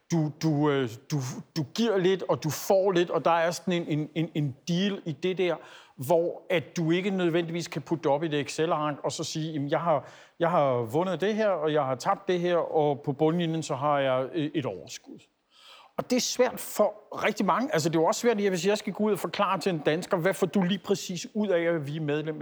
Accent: native